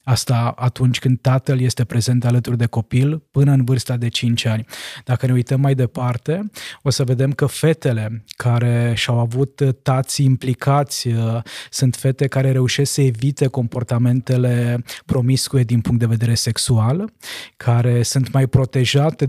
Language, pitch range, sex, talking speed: Romanian, 120-140 Hz, male, 145 wpm